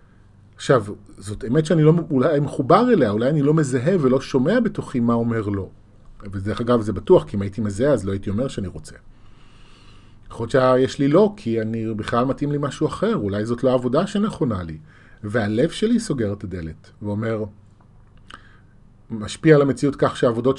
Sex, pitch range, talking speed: male, 105-140 Hz, 180 wpm